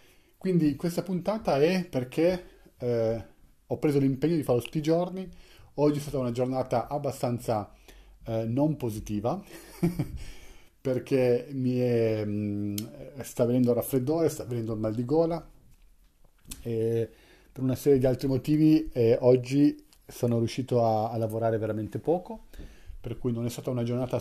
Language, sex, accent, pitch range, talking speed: Italian, male, native, 115-145 Hz, 140 wpm